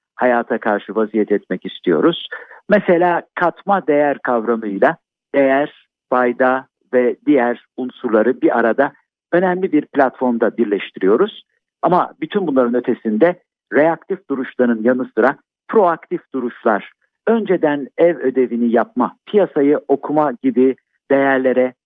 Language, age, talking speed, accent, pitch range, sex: Turkish, 60-79, 105 wpm, native, 125-175 Hz, male